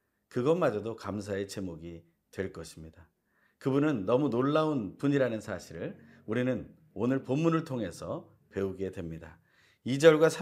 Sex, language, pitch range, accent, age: male, Korean, 95-150 Hz, native, 40-59